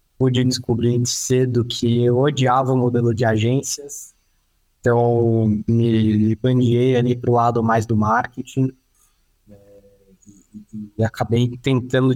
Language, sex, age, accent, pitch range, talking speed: Portuguese, male, 20-39, Brazilian, 110-125 Hz, 130 wpm